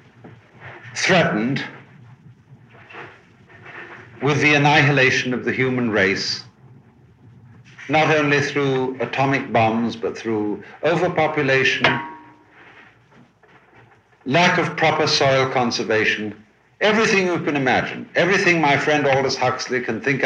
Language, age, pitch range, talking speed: English, 60-79, 120-150 Hz, 95 wpm